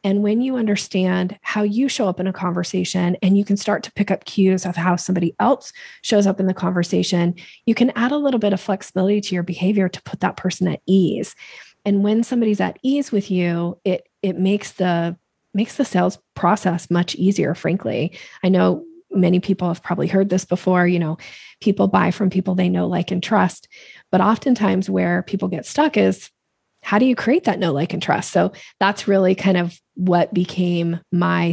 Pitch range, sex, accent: 180-210 Hz, female, American